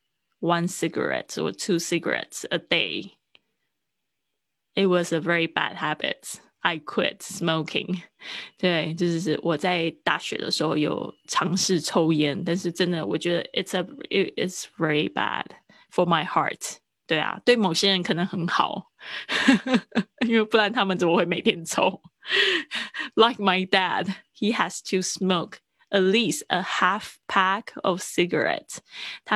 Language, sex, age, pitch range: Chinese, female, 20-39, 170-210 Hz